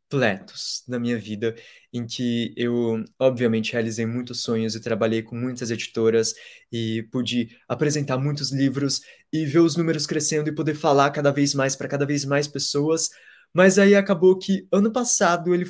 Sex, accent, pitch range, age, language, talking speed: male, Brazilian, 125-170 Hz, 20-39, Portuguese, 170 wpm